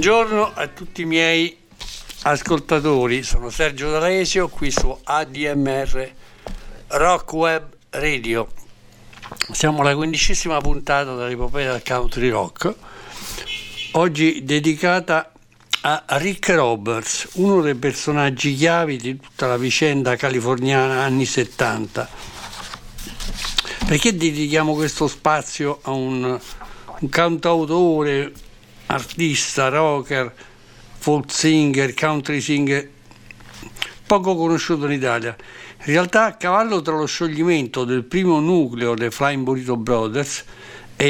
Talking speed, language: 105 wpm, Italian